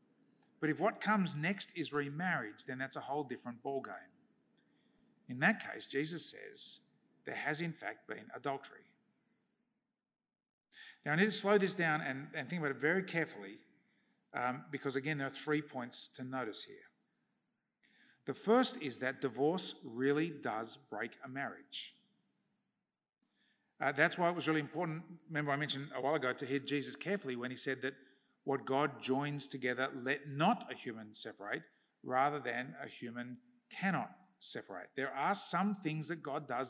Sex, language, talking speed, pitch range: male, English, 165 wpm, 135-205 Hz